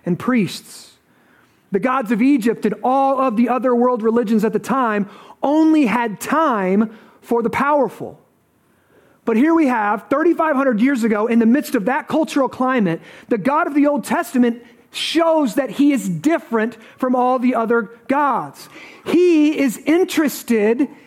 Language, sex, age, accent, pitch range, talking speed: English, male, 30-49, American, 215-275 Hz, 155 wpm